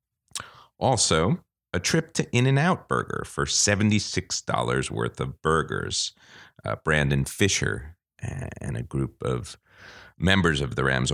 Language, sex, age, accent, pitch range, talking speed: English, male, 40-59, American, 70-100 Hz, 120 wpm